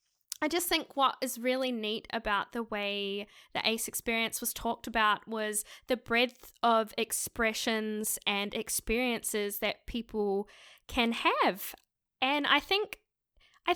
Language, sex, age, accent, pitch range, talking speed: English, female, 10-29, Australian, 225-300 Hz, 135 wpm